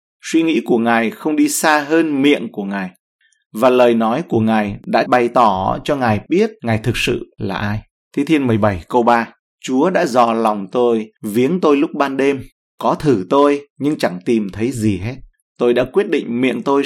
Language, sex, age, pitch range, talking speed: Vietnamese, male, 20-39, 105-135 Hz, 205 wpm